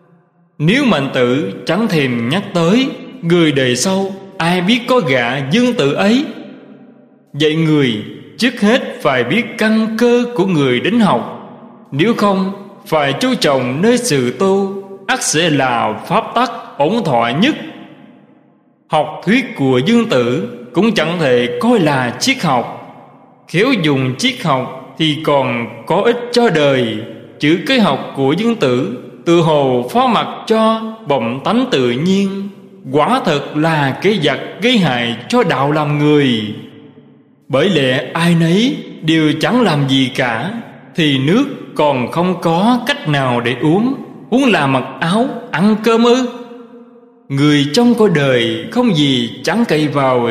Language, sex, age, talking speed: Vietnamese, male, 20-39, 150 wpm